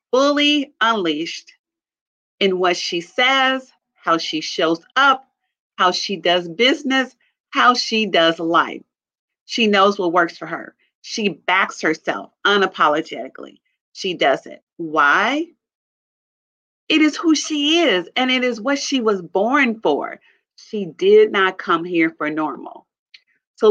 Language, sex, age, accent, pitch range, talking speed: English, female, 40-59, American, 175-265 Hz, 135 wpm